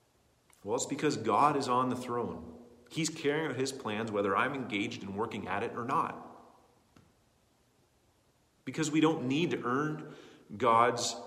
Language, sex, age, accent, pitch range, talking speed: English, male, 40-59, American, 110-145 Hz, 155 wpm